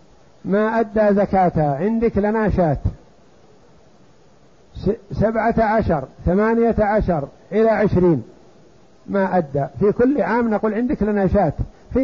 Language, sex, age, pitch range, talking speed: Arabic, male, 50-69, 175-220 Hz, 100 wpm